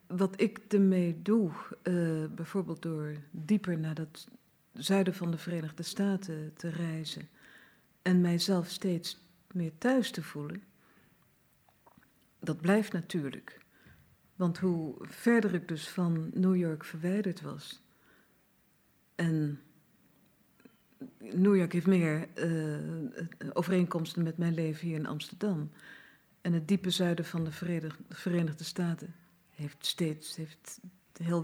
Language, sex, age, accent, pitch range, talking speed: Dutch, female, 50-69, Dutch, 165-200 Hz, 120 wpm